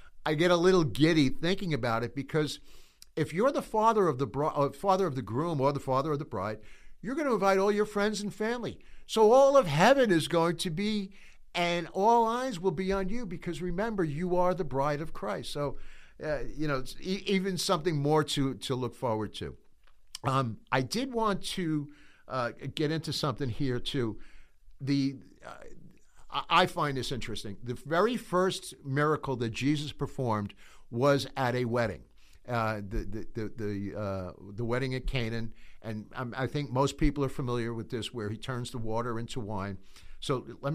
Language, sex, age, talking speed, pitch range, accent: English, male, 60-79, 190 wpm, 120-170 Hz, American